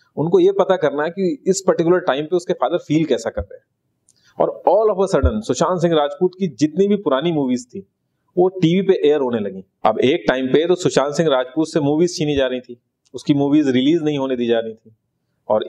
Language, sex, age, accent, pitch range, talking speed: Hindi, male, 30-49, native, 125-180 Hz, 230 wpm